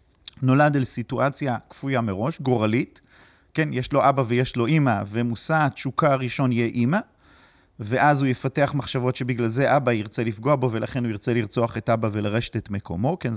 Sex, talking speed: male, 170 wpm